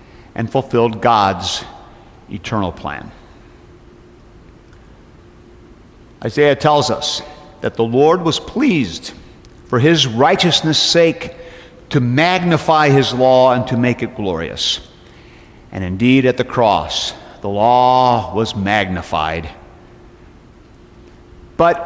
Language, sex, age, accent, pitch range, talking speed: English, male, 50-69, American, 115-160 Hz, 100 wpm